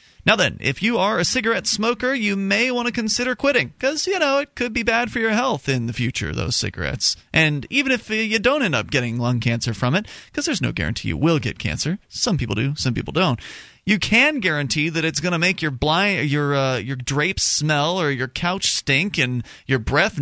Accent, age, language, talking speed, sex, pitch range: American, 30-49, English, 215 wpm, male, 120-180 Hz